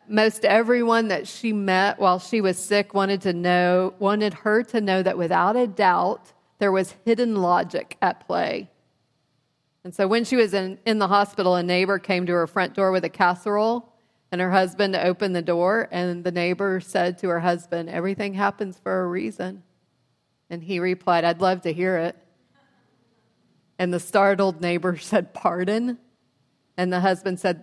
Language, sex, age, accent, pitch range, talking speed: English, female, 30-49, American, 180-210 Hz, 175 wpm